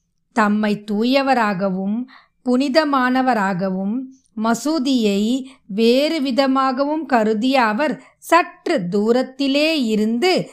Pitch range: 215-280 Hz